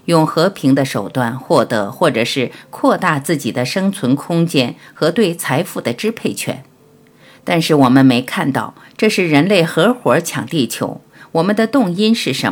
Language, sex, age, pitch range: Chinese, female, 50-69, 130-200 Hz